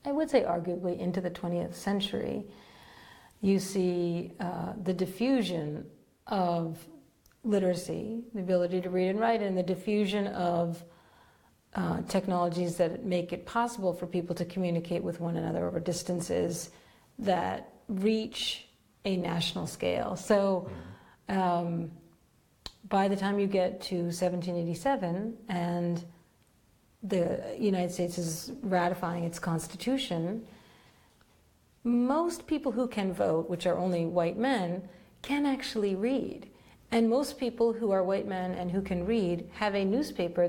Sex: female